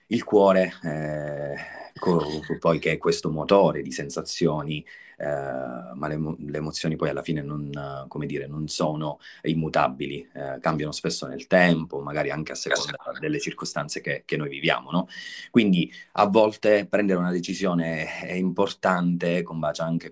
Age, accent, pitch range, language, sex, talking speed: 30-49, native, 75-90 Hz, Italian, male, 155 wpm